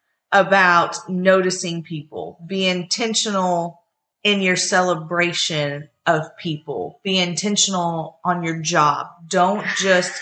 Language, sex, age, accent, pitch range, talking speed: English, female, 30-49, American, 165-200 Hz, 100 wpm